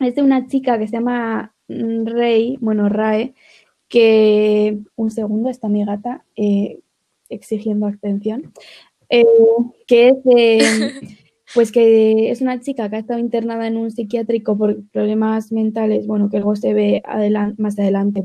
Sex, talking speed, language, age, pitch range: female, 150 wpm, Spanish, 20-39, 215-255 Hz